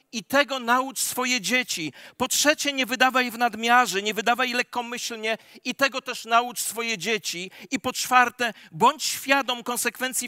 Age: 40-59